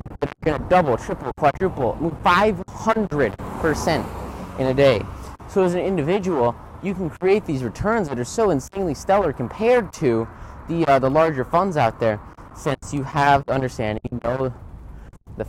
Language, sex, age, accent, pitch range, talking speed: English, male, 20-39, American, 105-150 Hz, 160 wpm